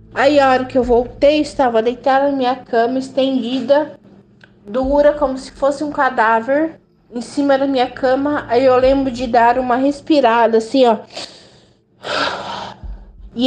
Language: Portuguese